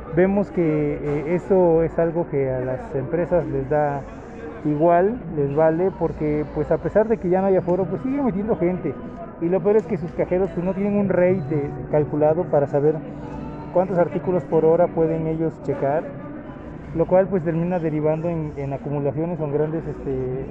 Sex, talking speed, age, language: male, 185 wpm, 30-49, Spanish